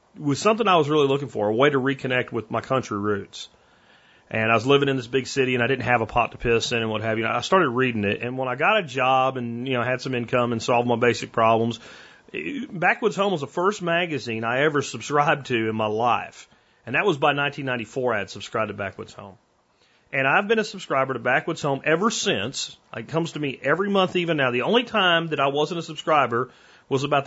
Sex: male